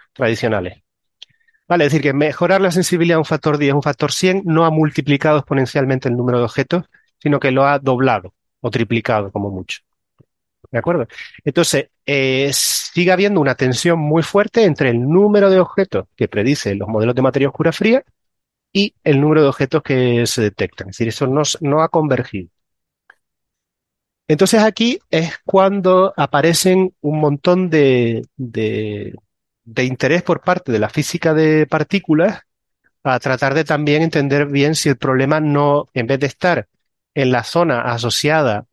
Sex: male